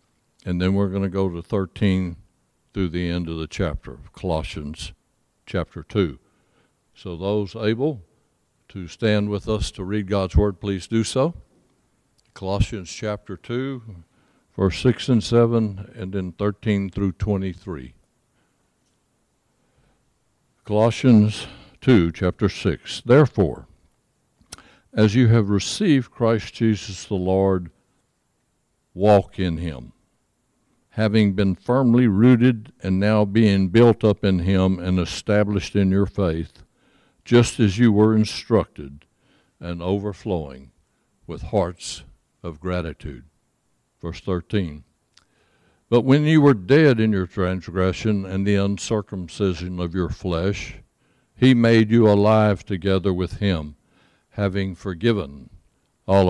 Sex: male